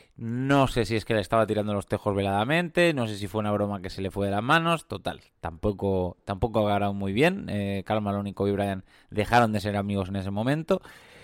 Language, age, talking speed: Spanish, 20-39, 220 wpm